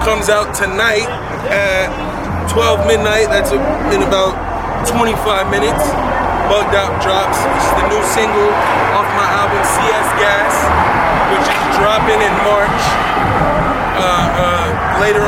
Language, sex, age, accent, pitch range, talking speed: English, male, 20-39, American, 185-220 Hz, 120 wpm